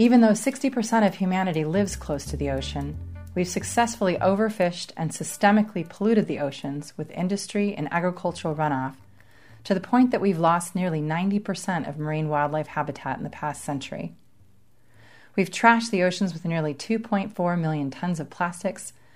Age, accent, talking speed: 30-49, American, 155 wpm